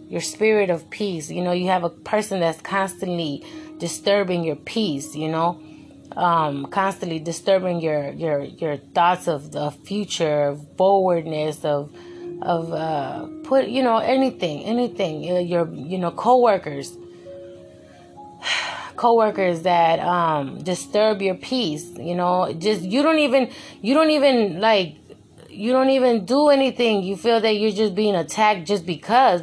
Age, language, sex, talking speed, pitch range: 20-39, English, female, 150 wpm, 165-220 Hz